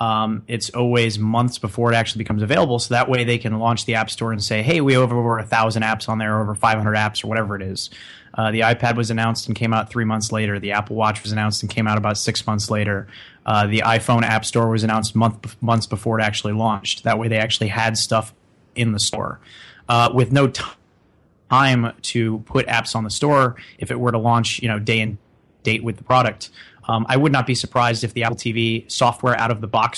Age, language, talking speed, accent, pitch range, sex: 30-49, English, 240 wpm, American, 110-120 Hz, male